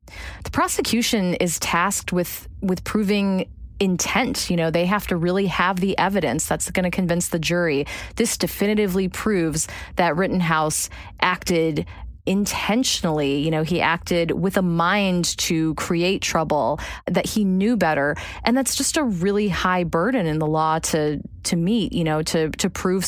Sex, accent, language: female, American, English